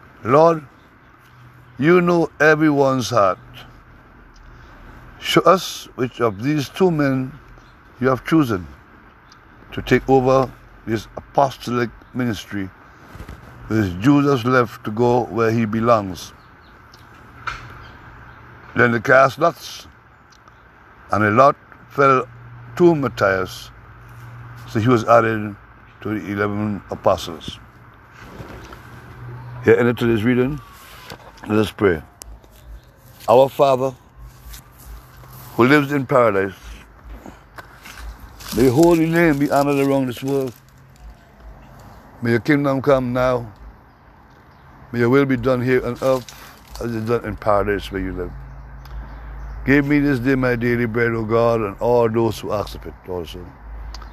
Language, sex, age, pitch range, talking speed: English, male, 60-79, 105-135 Hz, 120 wpm